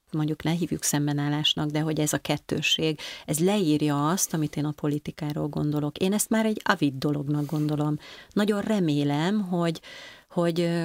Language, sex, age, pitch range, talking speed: Hungarian, female, 30-49, 150-170 Hz, 155 wpm